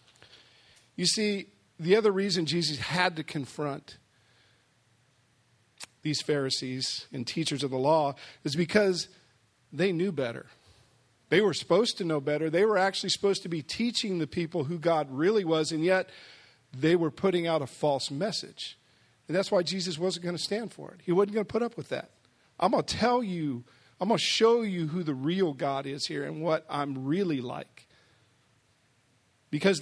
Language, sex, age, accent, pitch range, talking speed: English, male, 50-69, American, 130-180 Hz, 180 wpm